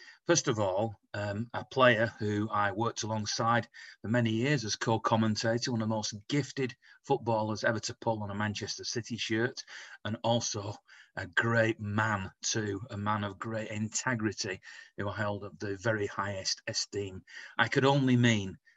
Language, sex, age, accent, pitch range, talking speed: English, male, 40-59, British, 100-120 Hz, 165 wpm